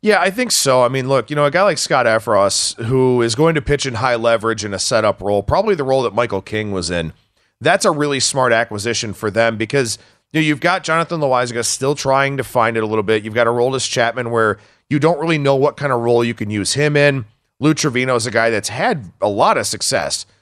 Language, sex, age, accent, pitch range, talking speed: English, male, 40-59, American, 110-140 Hz, 250 wpm